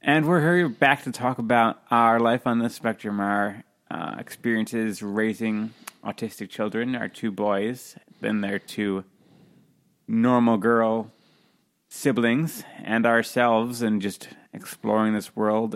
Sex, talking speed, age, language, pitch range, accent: male, 130 wpm, 30-49, English, 100-115 Hz, American